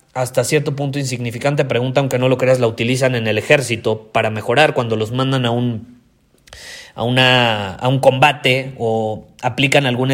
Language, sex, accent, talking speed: Spanish, male, Mexican, 170 wpm